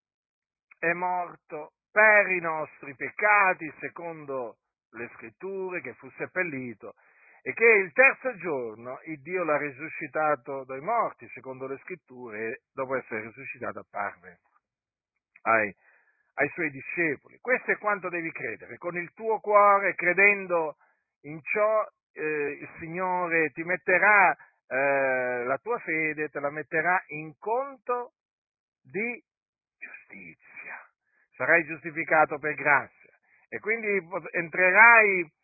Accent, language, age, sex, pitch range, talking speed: native, Italian, 50-69, male, 145-195 Hz, 120 wpm